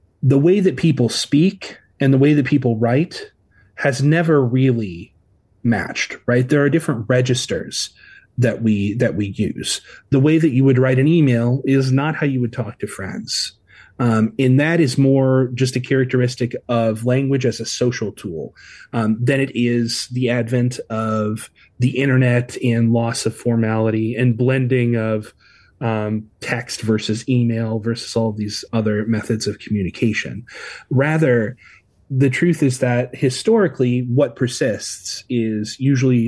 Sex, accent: male, American